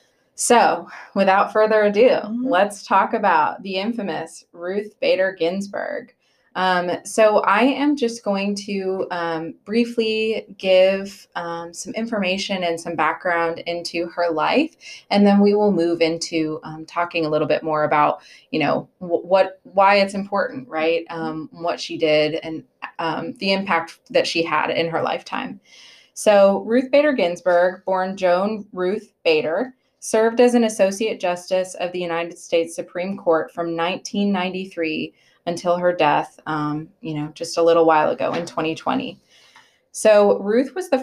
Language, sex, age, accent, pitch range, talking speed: English, female, 20-39, American, 165-205 Hz, 150 wpm